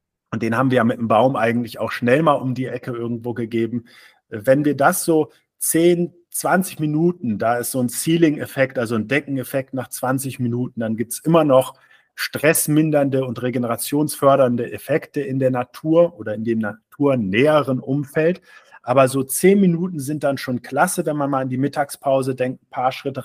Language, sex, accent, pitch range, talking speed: German, male, German, 120-150 Hz, 180 wpm